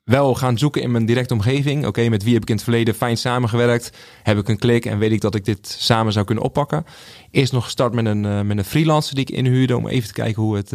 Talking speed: 275 wpm